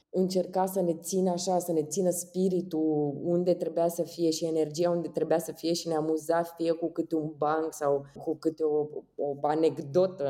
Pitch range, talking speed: 155-185 Hz, 190 wpm